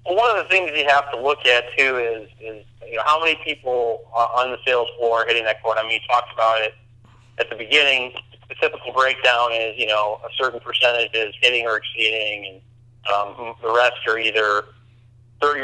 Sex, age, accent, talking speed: male, 40-59, American, 215 wpm